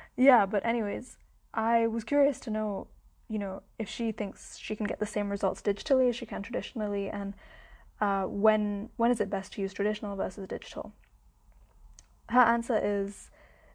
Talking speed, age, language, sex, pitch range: 170 wpm, 10-29, English, female, 205-245 Hz